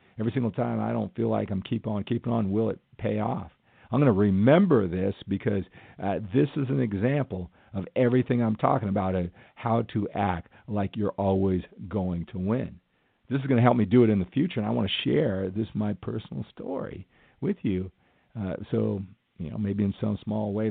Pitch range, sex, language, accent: 95-110 Hz, male, English, American